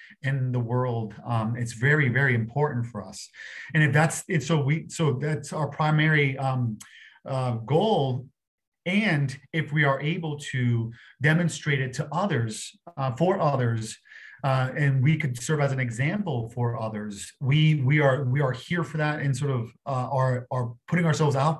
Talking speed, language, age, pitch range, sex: 175 wpm, English, 30-49, 120-150 Hz, male